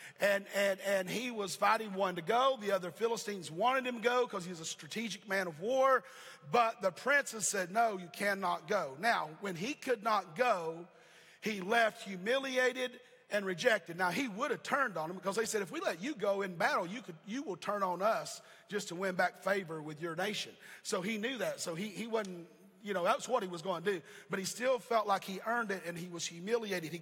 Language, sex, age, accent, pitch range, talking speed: English, male, 40-59, American, 180-225 Hz, 235 wpm